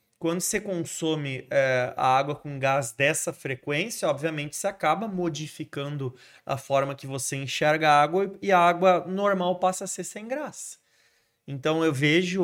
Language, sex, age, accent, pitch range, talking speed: Portuguese, male, 20-39, Brazilian, 130-180 Hz, 155 wpm